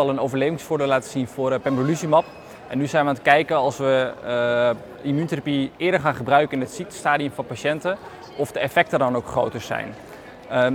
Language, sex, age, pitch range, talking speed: Dutch, male, 20-39, 125-145 Hz, 185 wpm